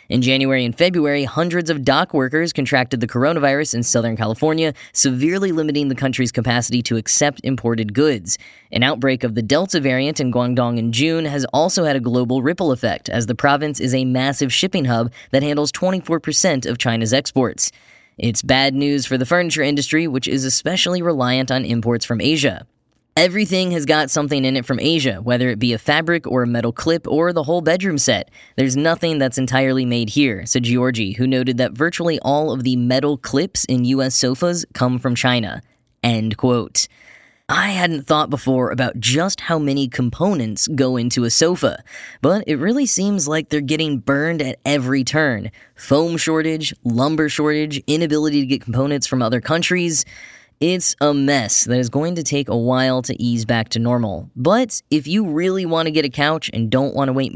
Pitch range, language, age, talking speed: 125-155 Hz, English, 10-29, 190 wpm